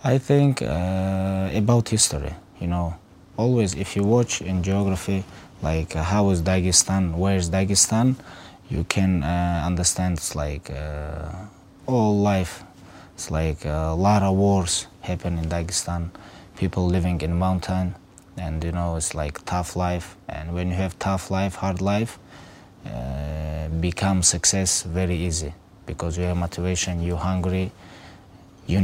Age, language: 20-39, English